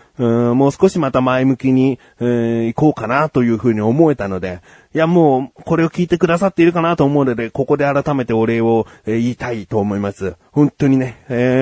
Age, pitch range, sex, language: 30-49, 115-145 Hz, male, Japanese